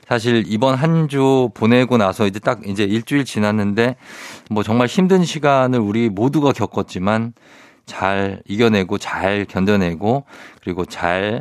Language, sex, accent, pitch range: Korean, male, native, 100-135 Hz